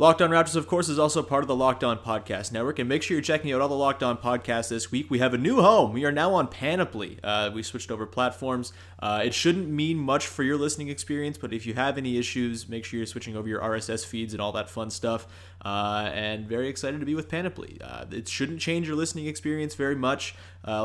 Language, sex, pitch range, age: English, male, 110-140 Hz, 30-49